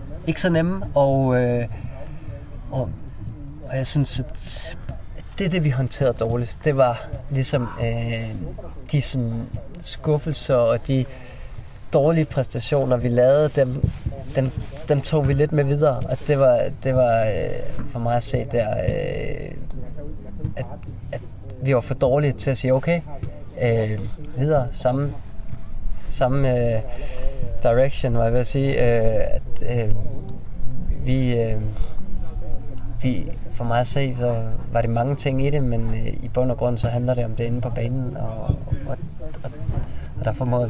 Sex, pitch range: male, 115-135 Hz